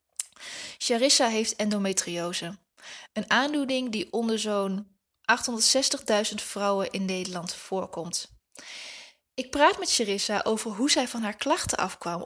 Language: Dutch